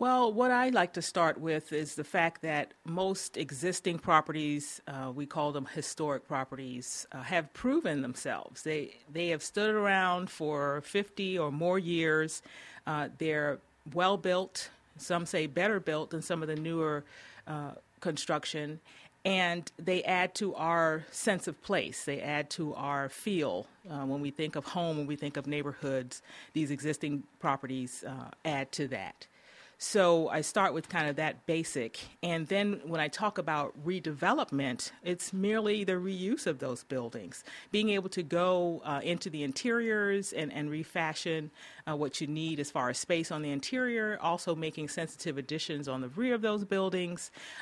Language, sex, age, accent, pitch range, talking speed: English, female, 40-59, American, 150-185 Hz, 170 wpm